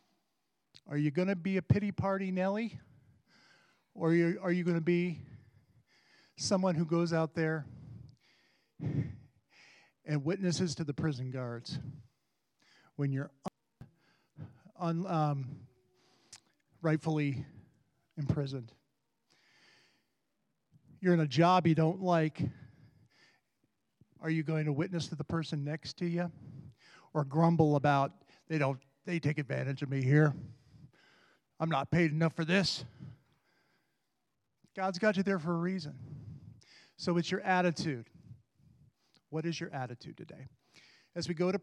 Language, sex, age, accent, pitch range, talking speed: English, male, 50-69, American, 135-170 Hz, 125 wpm